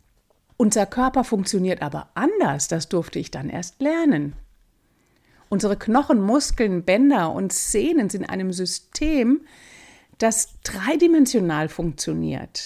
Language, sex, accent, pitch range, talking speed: German, female, German, 180-265 Hz, 115 wpm